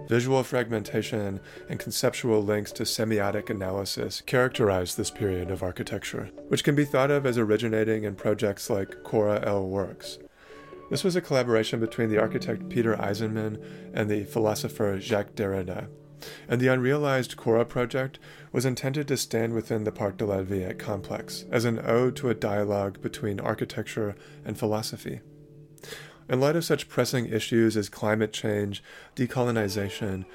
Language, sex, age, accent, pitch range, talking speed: English, male, 30-49, American, 105-130 Hz, 150 wpm